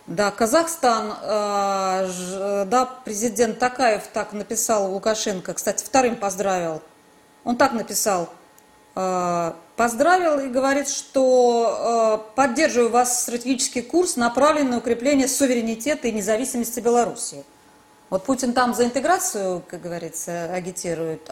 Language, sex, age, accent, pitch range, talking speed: Russian, female, 20-39, native, 195-270 Hz, 115 wpm